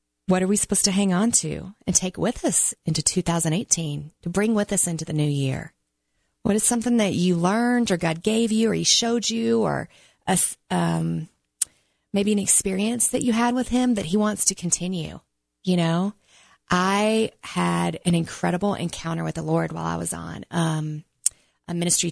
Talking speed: 185 wpm